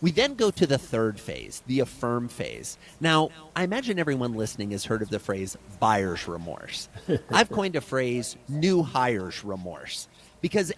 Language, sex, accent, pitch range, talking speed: English, male, American, 115-160 Hz, 165 wpm